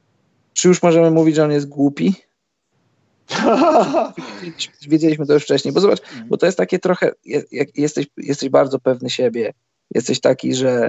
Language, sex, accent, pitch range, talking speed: Polish, male, native, 125-150 Hz, 155 wpm